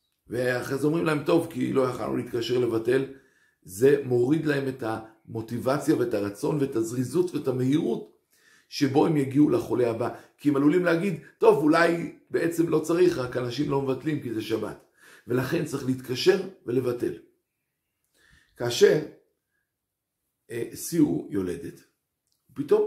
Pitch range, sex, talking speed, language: 125-170 Hz, male, 130 wpm, Hebrew